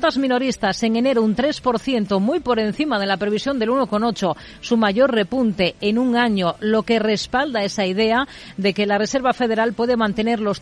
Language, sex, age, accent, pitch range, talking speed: Spanish, female, 40-59, Spanish, 200-245 Hz, 180 wpm